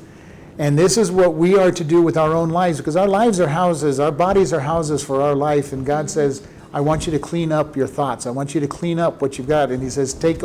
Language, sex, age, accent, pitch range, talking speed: English, male, 50-69, American, 145-180 Hz, 275 wpm